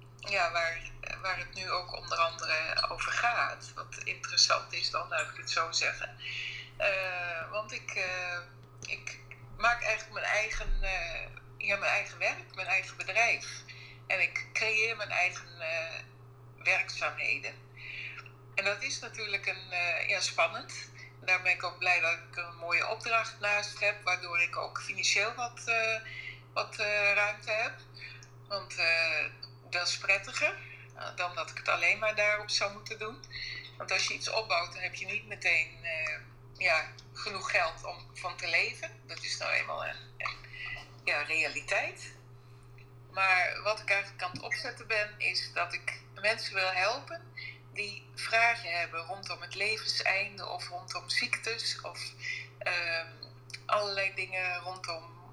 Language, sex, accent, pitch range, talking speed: Dutch, female, Dutch, 125-190 Hz, 155 wpm